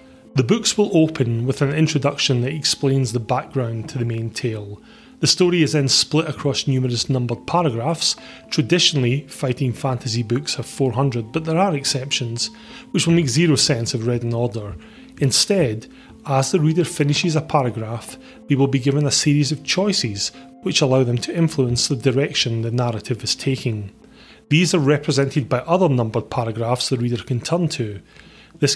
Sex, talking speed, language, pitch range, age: male, 170 wpm, English, 120-155 Hz, 30-49